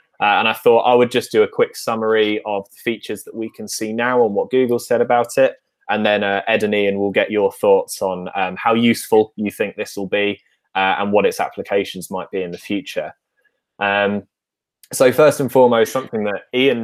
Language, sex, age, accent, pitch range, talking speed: English, male, 20-39, British, 105-135 Hz, 220 wpm